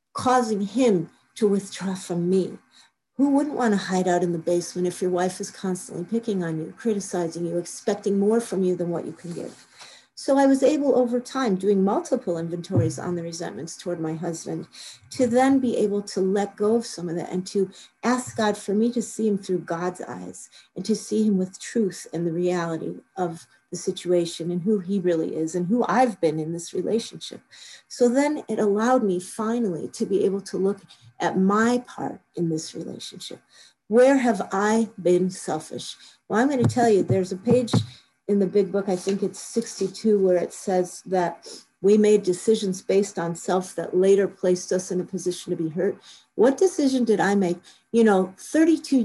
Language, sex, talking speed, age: English, female, 200 wpm, 50-69